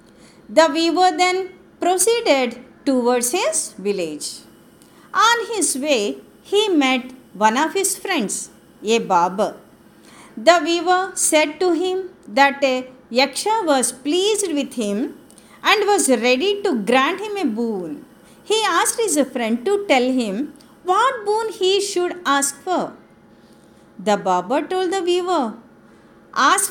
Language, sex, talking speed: Telugu, female, 130 wpm